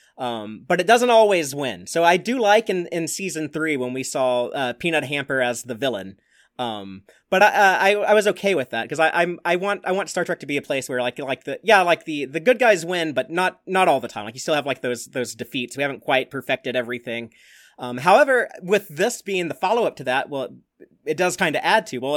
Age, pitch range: 30-49, 130-190 Hz